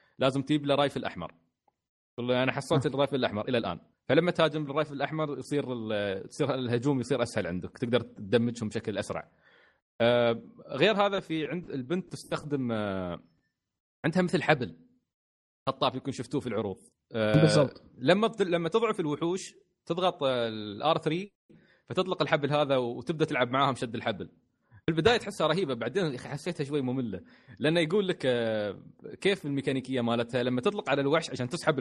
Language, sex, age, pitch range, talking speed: Arabic, male, 30-49, 125-165 Hz, 140 wpm